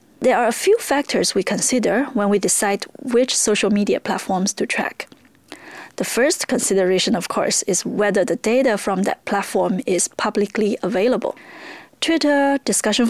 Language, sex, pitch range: English, female, 200-255 Hz